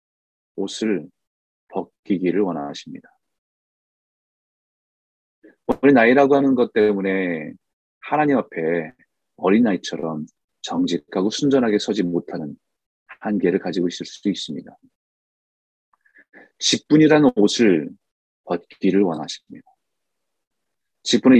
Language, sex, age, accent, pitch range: Korean, male, 30-49, native, 95-140 Hz